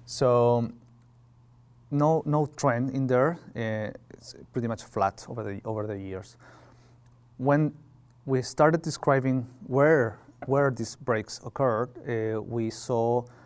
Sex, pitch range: male, 115-135 Hz